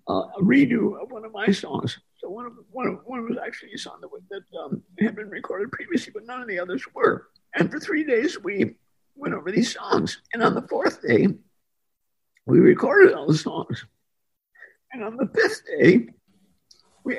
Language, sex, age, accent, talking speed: English, male, 50-69, American, 195 wpm